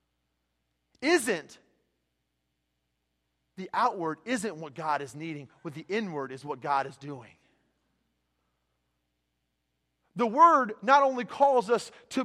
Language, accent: English, American